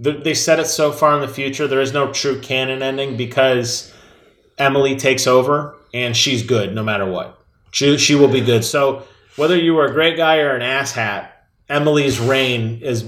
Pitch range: 120-150 Hz